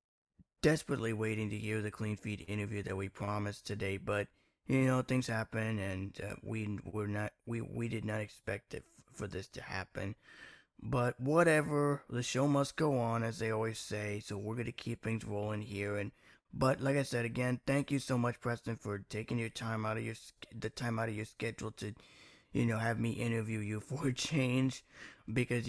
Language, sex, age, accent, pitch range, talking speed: English, male, 20-39, American, 105-125 Hz, 200 wpm